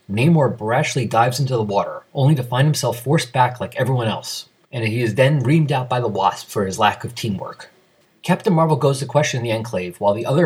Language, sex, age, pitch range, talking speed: English, male, 30-49, 110-150 Hz, 225 wpm